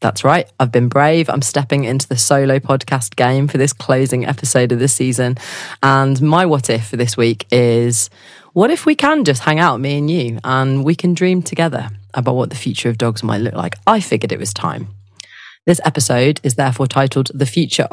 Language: English